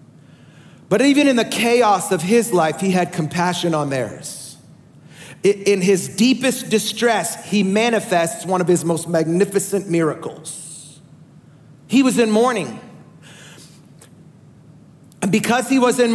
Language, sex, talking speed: English, male, 125 wpm